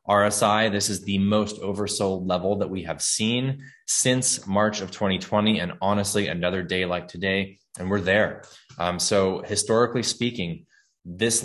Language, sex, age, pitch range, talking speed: English, male, 20-39, 90-105 Hz, 150 wpm